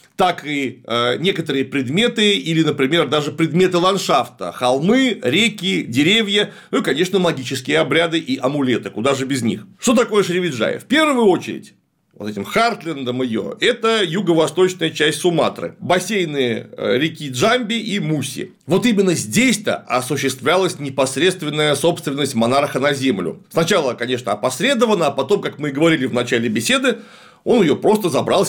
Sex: male